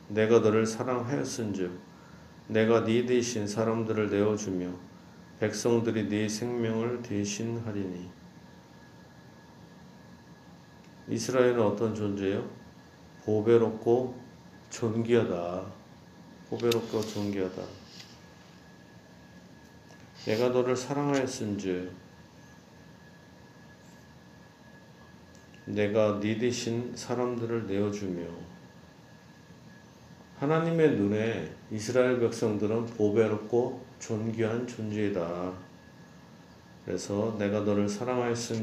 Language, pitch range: Korean, 100-120 Hz